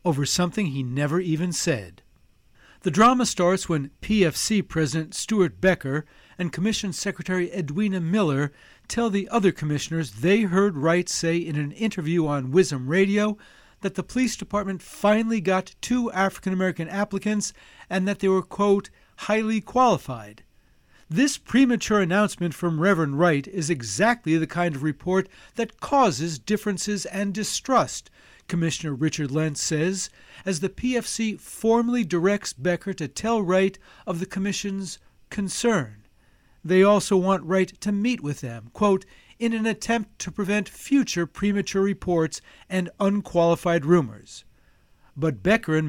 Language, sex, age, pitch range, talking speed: English, male, 60-79, 160-210 Hz, 140 wpm